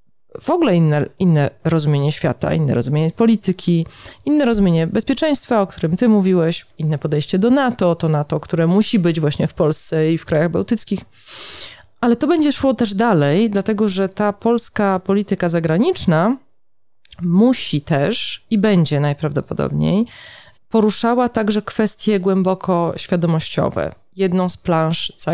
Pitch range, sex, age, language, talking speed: 160-215 Hz, female, 30-49, Polish, 135 wpm